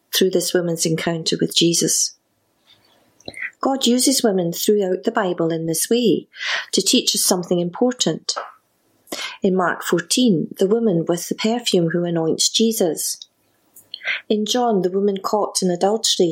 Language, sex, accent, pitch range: English, female, British, 175-225 Hz